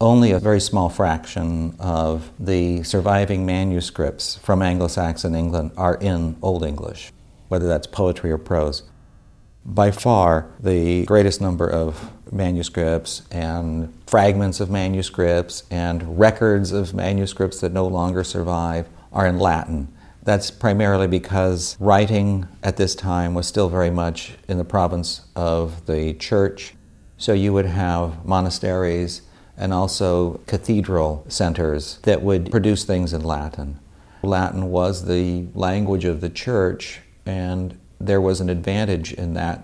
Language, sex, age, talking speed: English, male, 50-69, 135 wpm